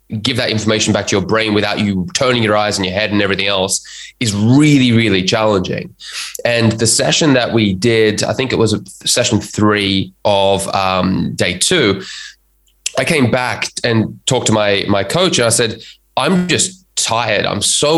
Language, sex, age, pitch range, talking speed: English, male, 20-39, 100-125 Hz, 185 wpm